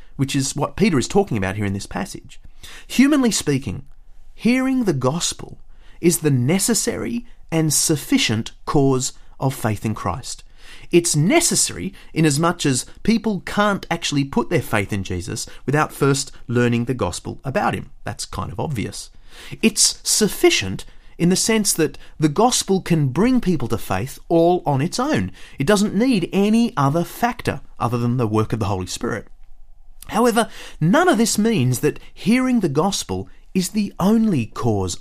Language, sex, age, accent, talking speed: English, male, 30-49, Australian, 165 wpm